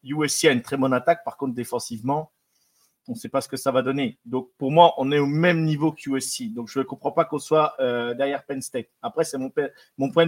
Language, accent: French, French